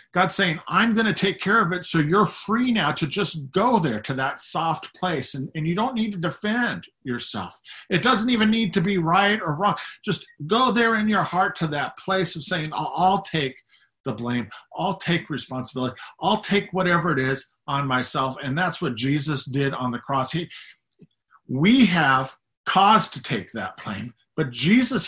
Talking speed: 195 wpm